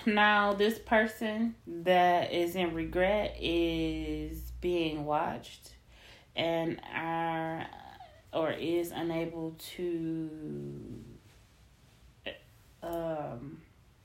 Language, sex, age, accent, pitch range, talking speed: English, female, 30-49, American, 150-175 Hz, 75 wpm